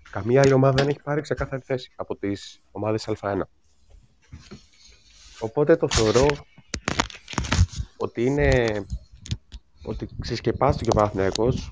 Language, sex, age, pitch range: Greek, male, 30-49, 95-125 Hz